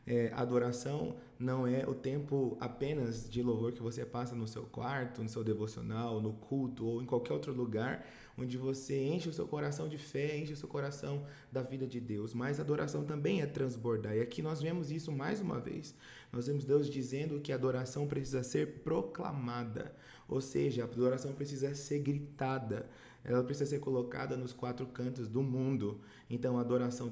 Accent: Brazilian